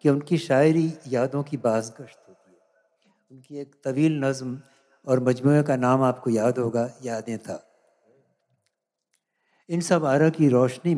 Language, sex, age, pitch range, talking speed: Hindi, male, 60-79, 120-145 Hz, 140 wpm